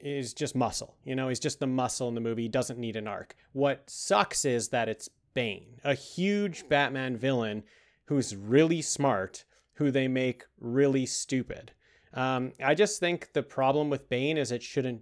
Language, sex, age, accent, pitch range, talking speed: English, male, 30-49, American, 130-165 Hz, 185 wpm